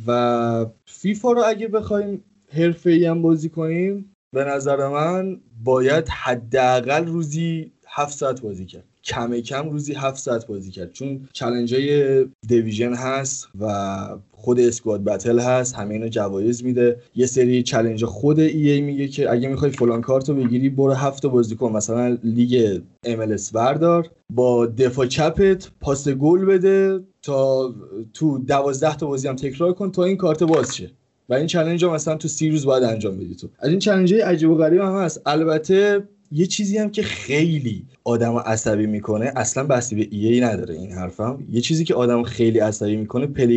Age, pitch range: 20-39, 120-170 Hz